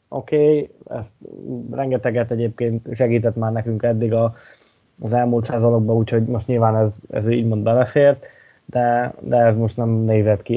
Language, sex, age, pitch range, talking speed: Hungarian, male, 20-39, 110-125 Hz, 150 wpm